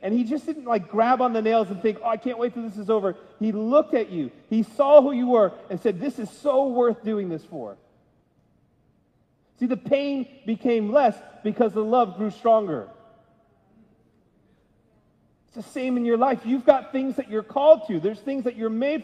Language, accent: English, American